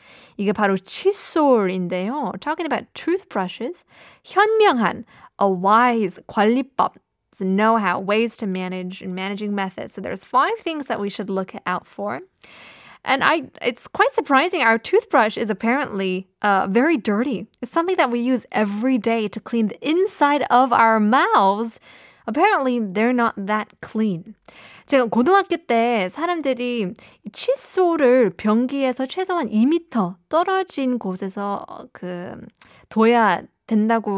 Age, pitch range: 20-39, 200-275 Hz